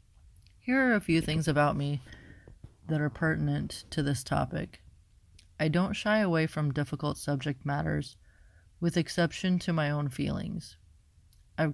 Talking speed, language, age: 145 wpm, English, 30-49